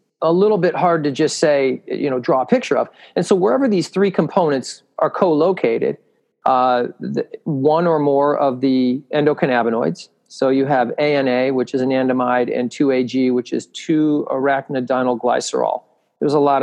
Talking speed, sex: 160 wpm, male